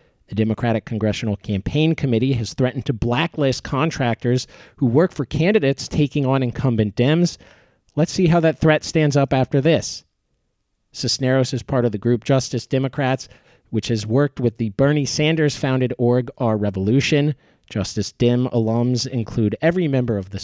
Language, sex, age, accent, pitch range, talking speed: English, male, 40-59, American, 110-140 Hz, 155 wpm